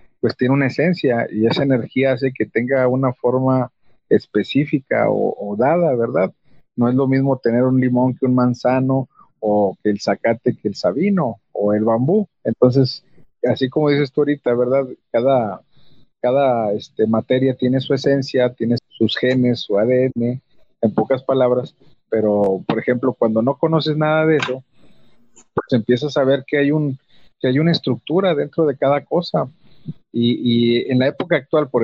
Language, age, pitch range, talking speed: Spanish, 50-69, 120-145 Hz, 170 wpm